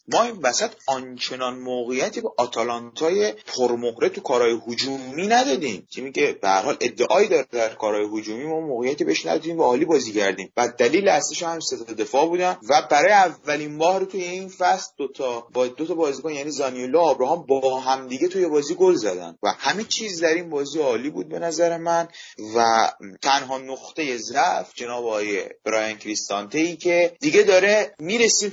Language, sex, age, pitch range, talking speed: Persian, male, 30-49, 120-175 Hz, 175 wpm